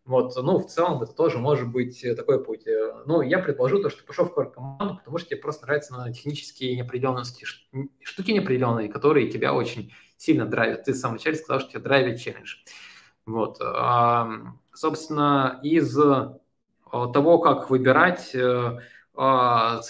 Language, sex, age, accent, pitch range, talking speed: Russian, male, 20-39, native, 120-150 Hz, 150 wpm